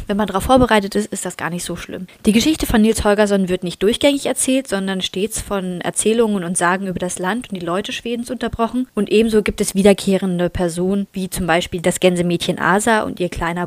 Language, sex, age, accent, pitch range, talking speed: German, female, 20-39, German, 180-215 Hz, 215 wpm